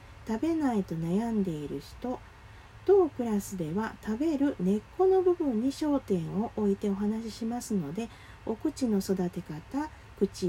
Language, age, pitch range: Japanese, 40-59, 180-280 Hz